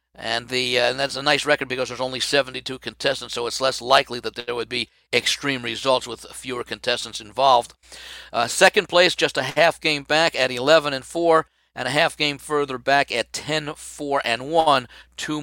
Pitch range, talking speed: 135-165 Hz, 185 wpm